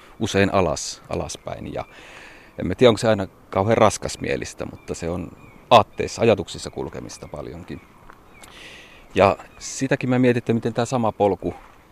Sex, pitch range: male, 85-105 Hz